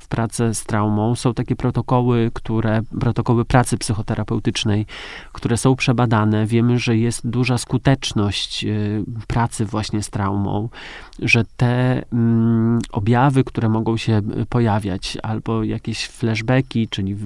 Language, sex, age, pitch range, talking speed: Polish, male, 40-59, 110-125 Hz, 125 wpm